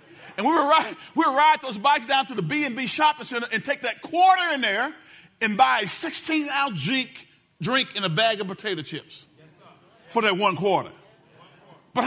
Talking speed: 180 wpm